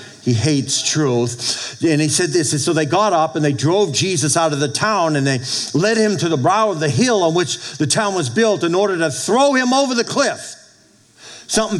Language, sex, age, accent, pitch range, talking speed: English, male, 50-69, American, 135-185 Hz, 230 wpm